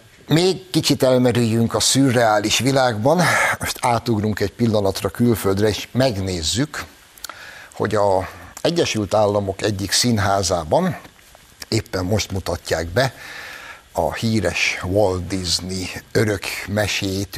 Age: 60-79